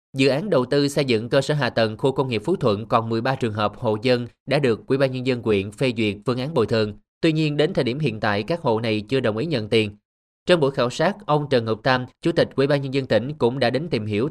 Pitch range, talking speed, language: 110-145 Hz, 290 wpm, Vietnamese